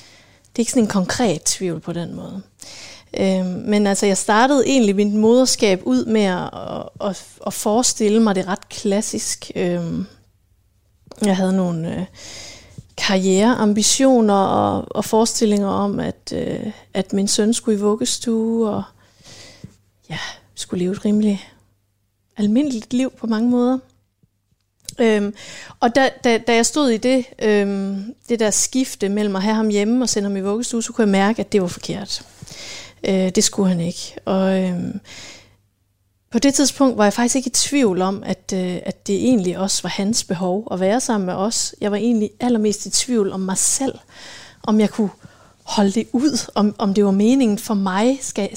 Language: Danish